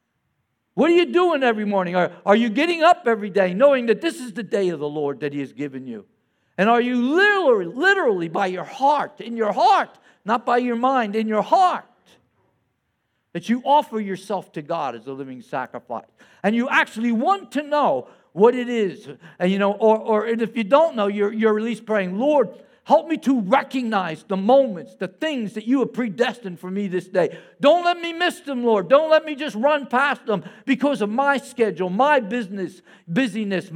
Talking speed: 205 wpm